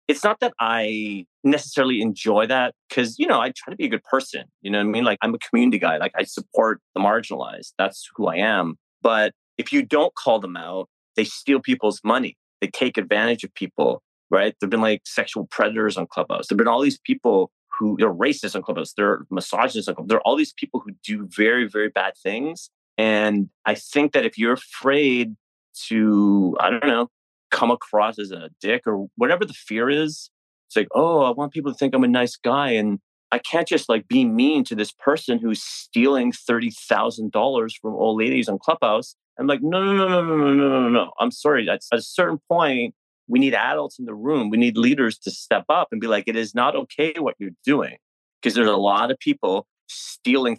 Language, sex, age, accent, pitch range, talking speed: English, male, 30-49, American, 110-175 Hz, 215 wpm